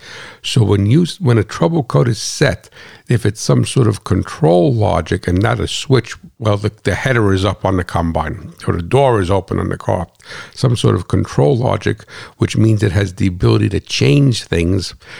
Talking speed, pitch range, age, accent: 200 wpm, 100-125 Hz, 60-79, American